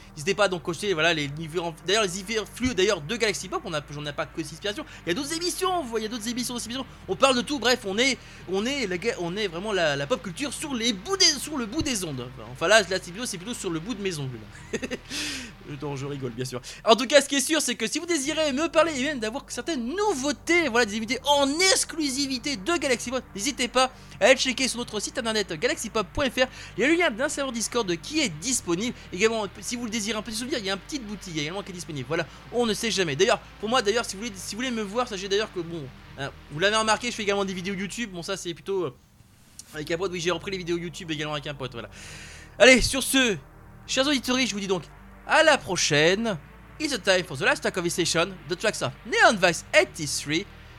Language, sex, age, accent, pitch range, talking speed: French, male, 20-39, French, 175-260 Hz, 255 wpm